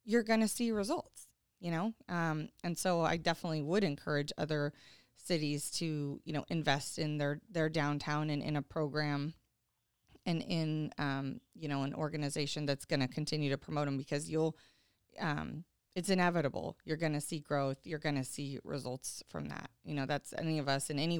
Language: English